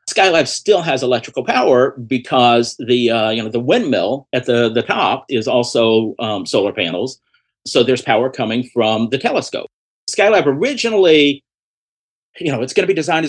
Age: 50-69